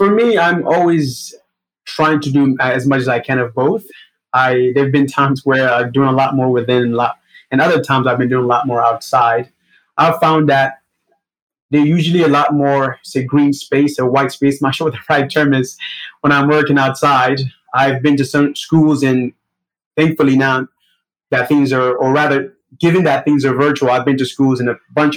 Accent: American